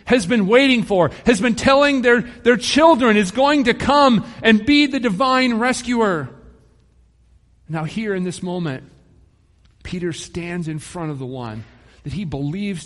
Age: 40-59